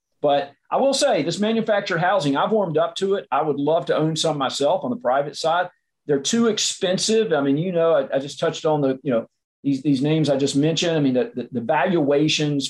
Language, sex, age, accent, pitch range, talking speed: English, male, 40-59, American, 135-165 Hz, 235 wpm